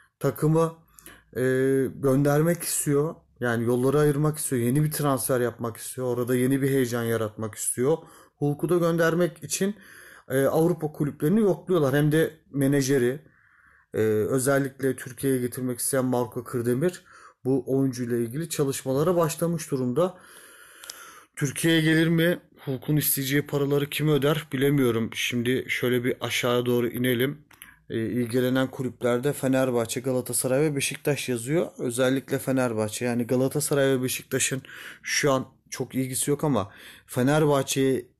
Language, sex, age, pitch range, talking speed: Turkish, male, 30-49, 120-145 Hz, 125 wpm